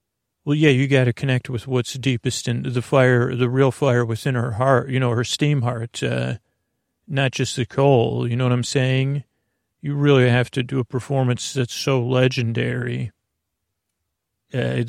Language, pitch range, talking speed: English, 120-135 Hz, 175 wpm